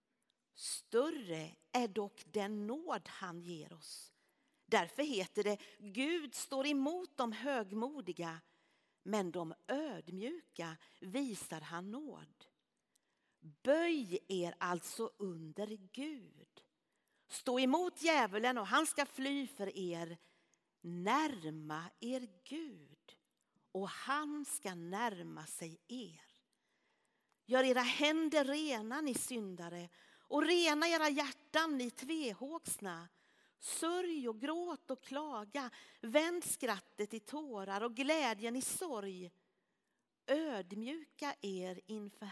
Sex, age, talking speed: female, 50-69, 105 wpm